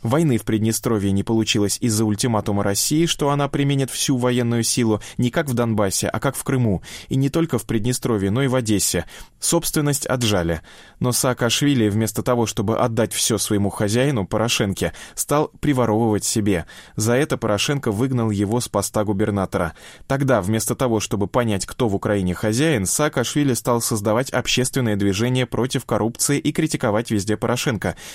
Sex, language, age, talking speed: male, Russian, 20-39, 160 wpm